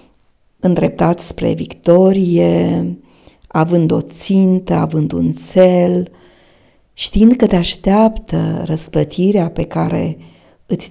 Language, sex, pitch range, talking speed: Romanian, female, 165-200 Hz, 95 wpm